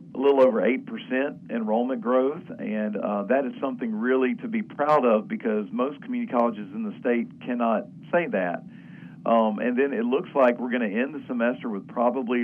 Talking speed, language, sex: 195 wpm, English, male